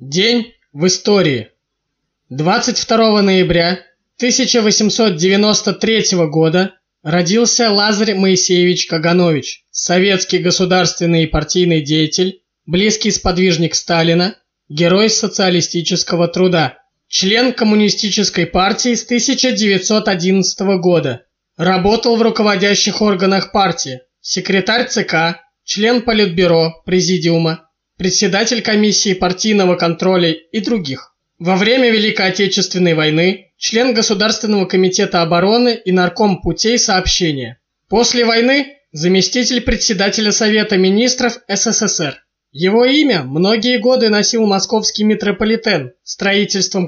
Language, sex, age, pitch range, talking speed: Russian, male, 20-39, 175-220 Hz, 95 wpm